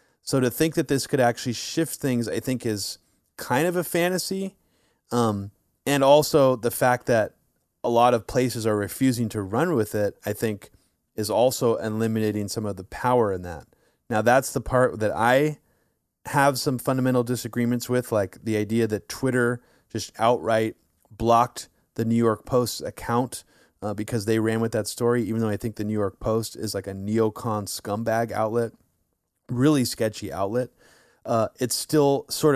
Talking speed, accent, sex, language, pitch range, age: 175 wpm, American, male, English, 105-130 Hz, 30-49